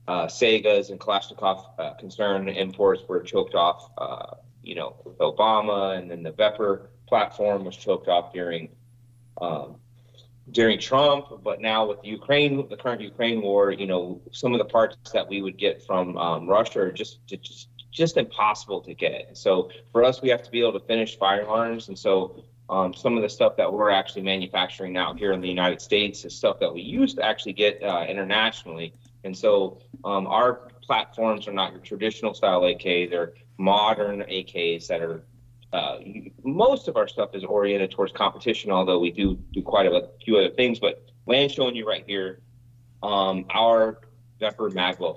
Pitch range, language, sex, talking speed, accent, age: 95-120 Hz, English, male, 180 wpm, American, 30-49